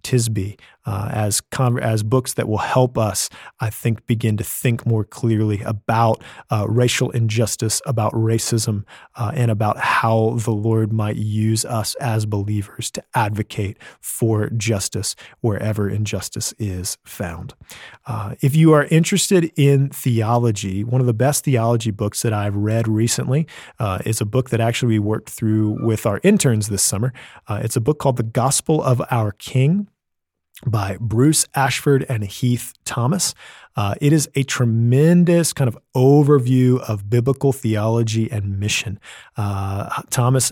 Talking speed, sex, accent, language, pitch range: 155 wpm, male, American, English, 110-125 Hz